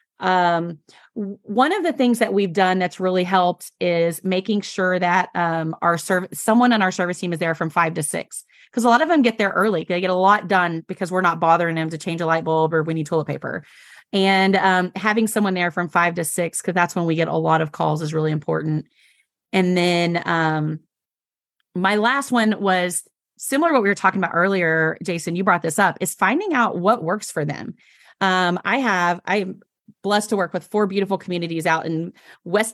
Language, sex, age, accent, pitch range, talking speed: English, female, 30-49, American, 175-215 Hz, 220 wpm